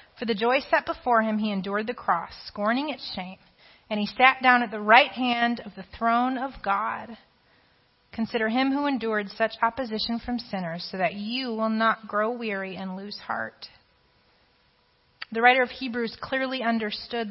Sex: female